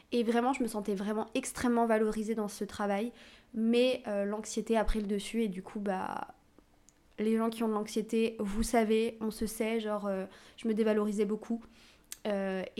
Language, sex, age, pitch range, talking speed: French, female, 20-39, 215-250 Hz, 190 wpm